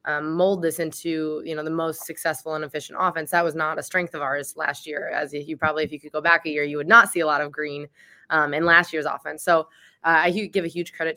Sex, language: female, English